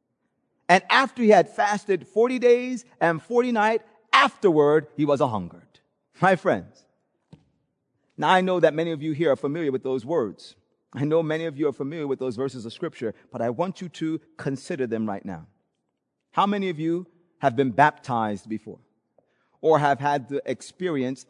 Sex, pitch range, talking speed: male, 135-175 Hz, 180 wpm